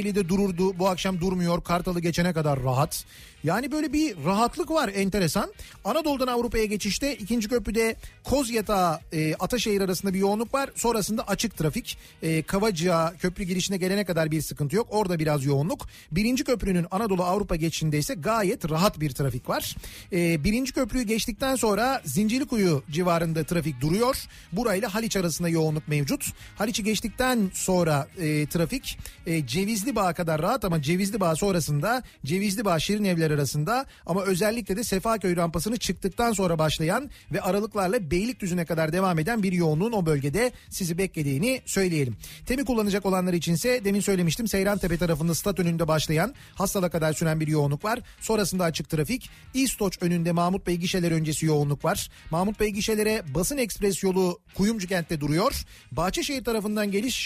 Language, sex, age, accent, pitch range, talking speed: Turkish, male, 40-59, native, 165-220 Hz, 155 wpm